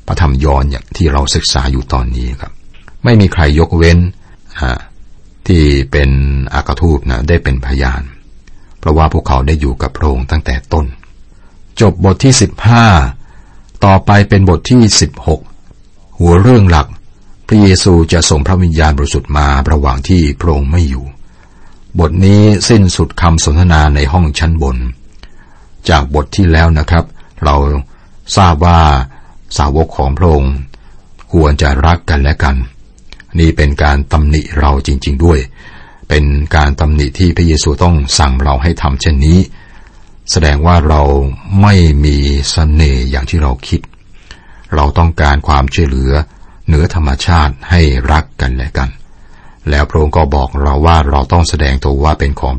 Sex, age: male, 60-79